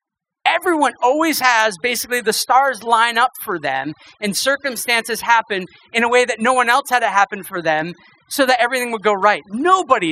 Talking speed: 190 wpm